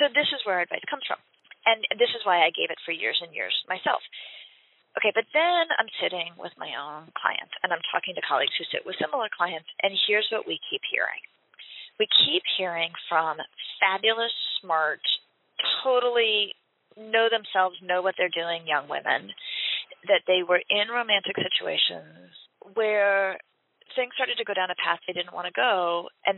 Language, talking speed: English, 170 wpm